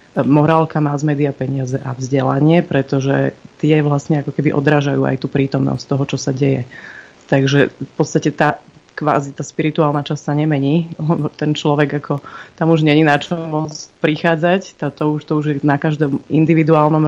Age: 30-49